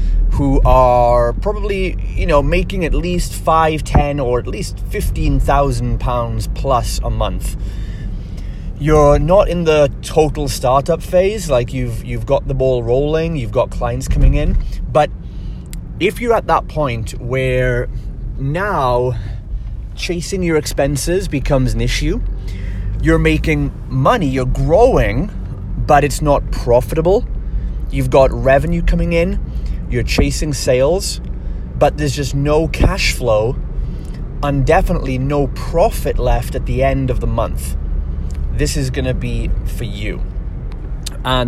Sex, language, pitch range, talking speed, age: male, English, 110-145 Hz, 135 wpm, 30-49